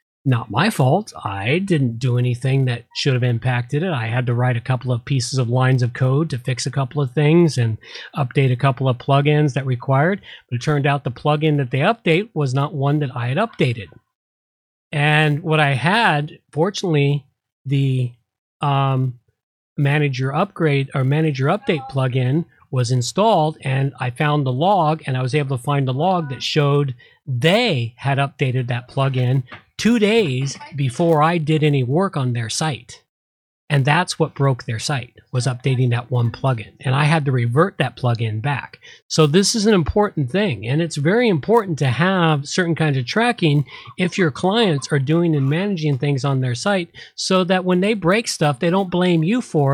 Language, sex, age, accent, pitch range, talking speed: English, male, 40-59, American, 130-165 Hz, 185 wpm